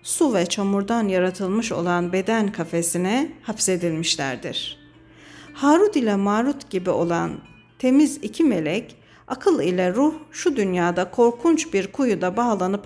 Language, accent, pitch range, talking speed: Turkish, native, 175-235 Hz, 115 wpm